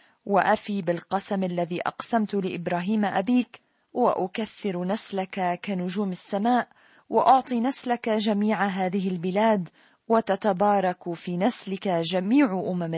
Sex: female